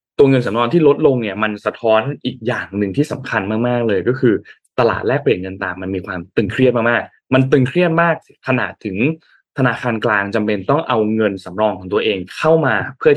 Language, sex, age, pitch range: Thai, male, 20-39, 105-135 Hz